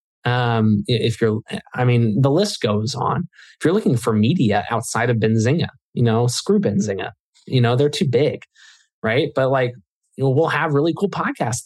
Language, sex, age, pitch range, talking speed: English, male, 20-39, 115-150 Hz, 185 wpm